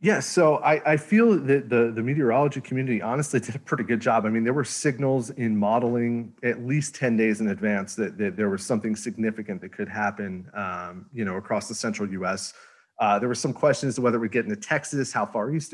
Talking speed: 230 wpm